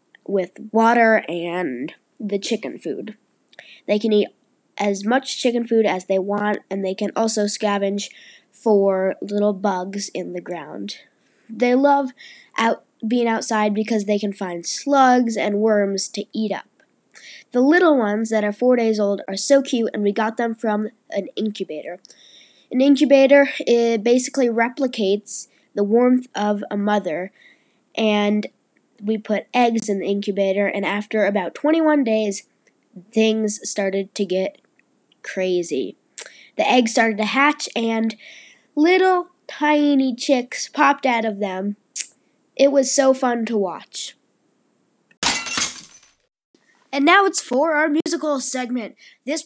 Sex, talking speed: female, 140 wpm